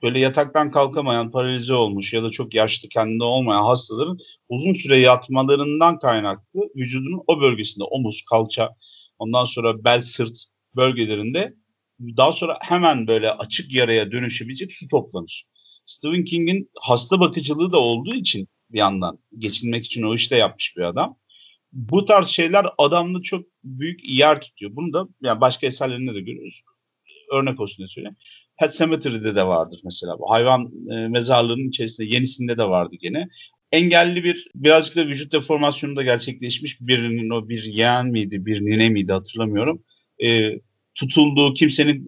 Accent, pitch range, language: native, 110-150 Hz, Turkish